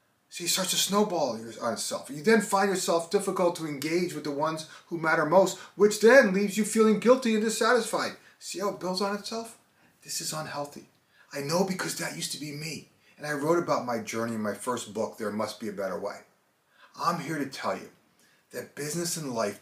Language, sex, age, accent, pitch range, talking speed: English, male, 30-49, American, 150-210 Hz, 215 wpm